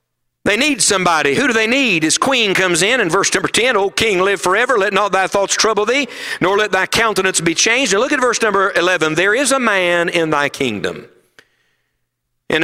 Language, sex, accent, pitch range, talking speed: English, male, American, 185-255 Hz, 215 wpm